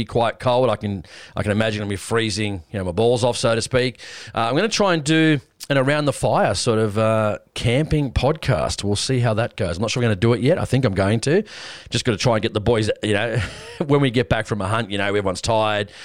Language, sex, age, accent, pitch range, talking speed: English, male, 30-49, Australian, 105-135 Hz, 280 wpm